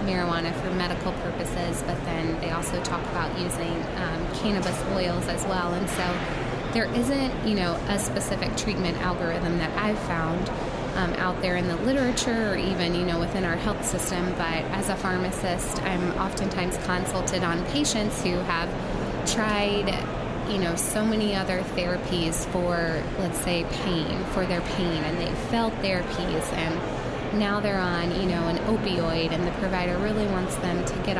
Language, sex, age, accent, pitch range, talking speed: English, female, 20-39, American, 170-205 Hz, 165 wpm